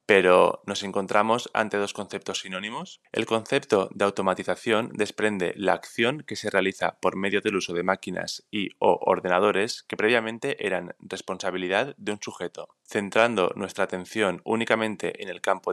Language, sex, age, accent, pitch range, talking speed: Spanish, male, 20-39, Spanish, 95-110 Hz, 155 wpm